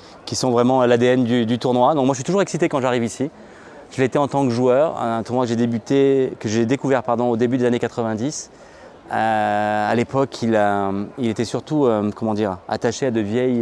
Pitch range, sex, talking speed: 110-130 Hz, male, 225 wpm